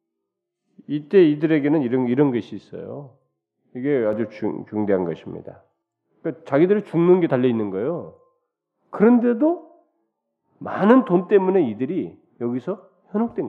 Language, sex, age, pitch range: Korean, male, 40-59, 105-170 Hz